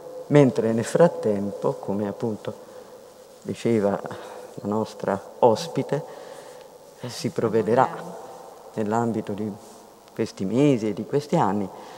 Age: 50-69